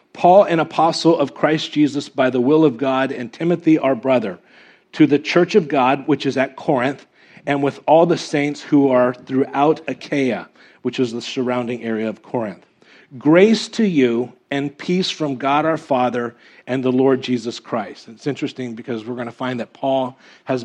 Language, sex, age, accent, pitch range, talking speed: English, male, 40-59, American, 125-150 Hz, 185 wpm